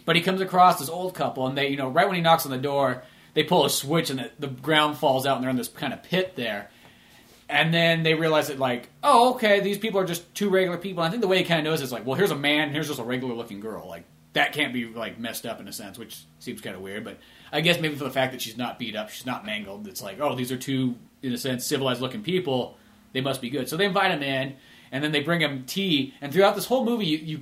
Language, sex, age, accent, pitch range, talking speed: English, male, 30-49, American, 130-175 Hz, 295 wpm